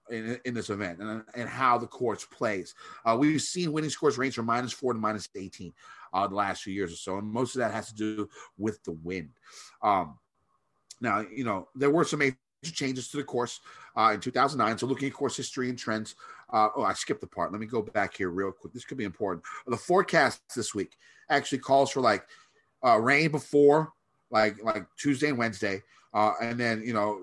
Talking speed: 215 wpm